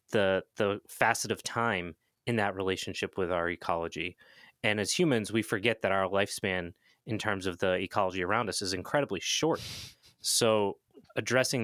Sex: male